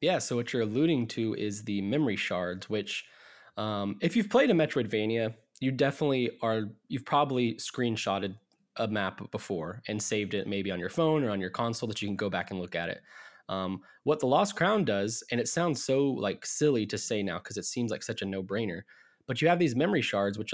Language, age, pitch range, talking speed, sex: English, 20-39, 105-140 Hz, 220 wpm, male